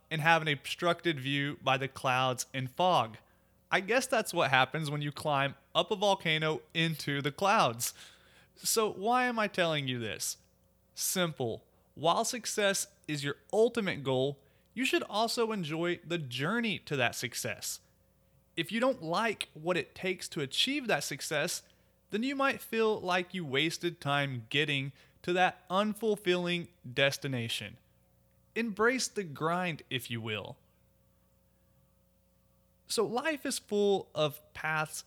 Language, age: English, 30-49